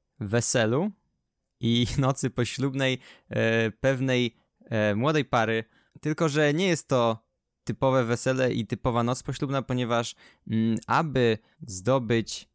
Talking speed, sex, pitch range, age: 100 wpm, male, 110-130 Hz, 20-39